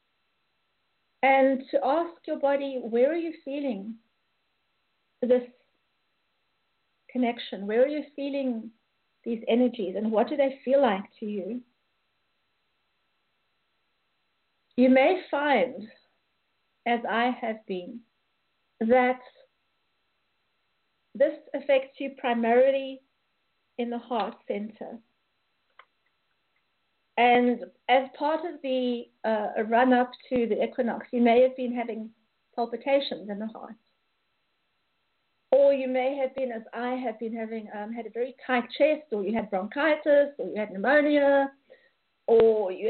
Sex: female